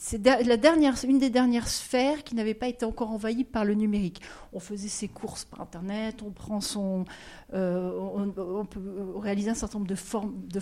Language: French